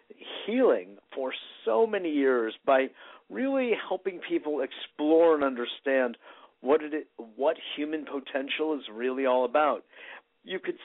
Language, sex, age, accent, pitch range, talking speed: English, male, 50-69, American, 120-150 Hz, 125 wpm